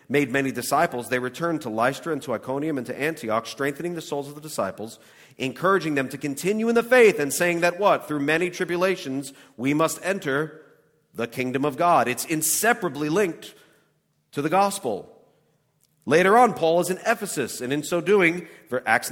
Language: English